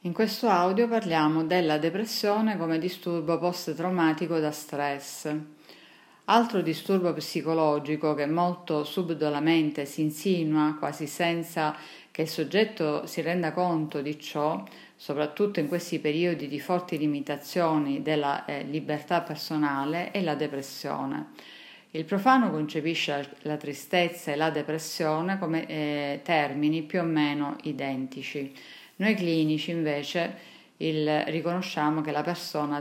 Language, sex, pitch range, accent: Italian, female, 150-175 Hz, native